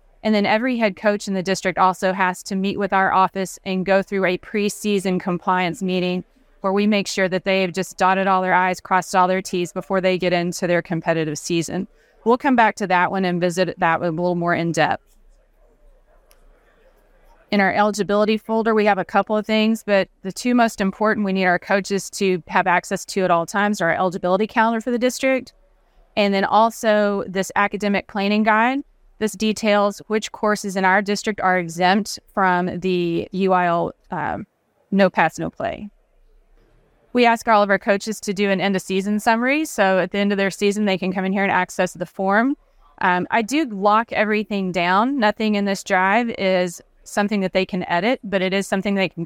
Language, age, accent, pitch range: English, 30-49, American, 185-210 Hz